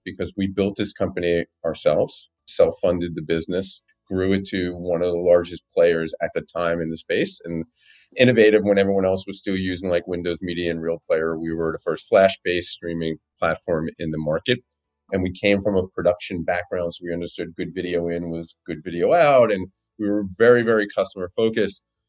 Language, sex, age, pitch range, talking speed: English, male, 40-59, 85-110 Hz, 195 wpm